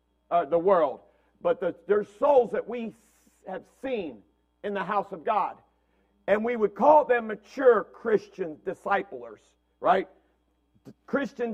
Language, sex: English, male